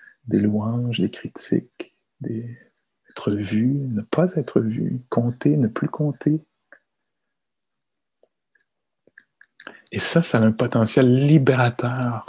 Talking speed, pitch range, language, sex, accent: 105 wpm, 110-135 Hz, English, male, French